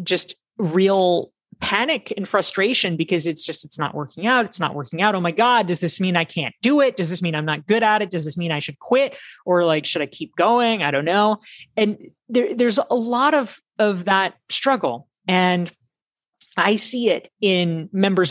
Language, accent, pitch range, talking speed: English, American, 155-210 Hz, 205 wpm